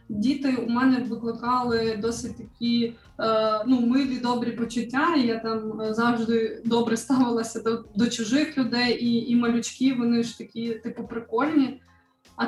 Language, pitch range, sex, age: Ukrainian, 225-255 Hz, female, 20-39